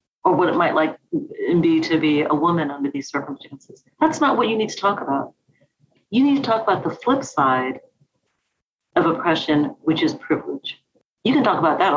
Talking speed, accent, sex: 195 wpm, American, female